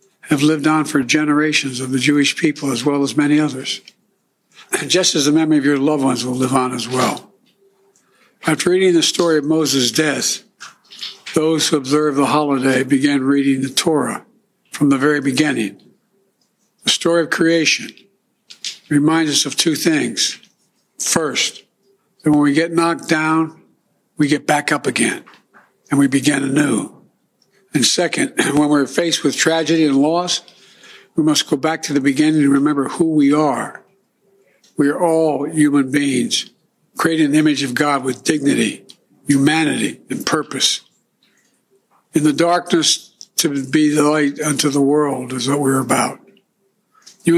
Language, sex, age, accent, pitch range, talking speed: English, male, 60-79, American, 145-170 Hz, 155 wpm